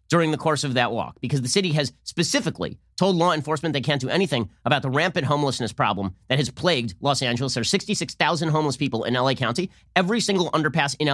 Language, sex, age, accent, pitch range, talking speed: English, male, 30-49, American, 120-165 Hz, 215 wpm